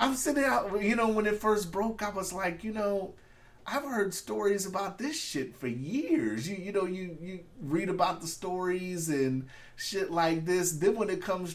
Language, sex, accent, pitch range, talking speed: English, male, American, 125-185 Hz, 205 wpm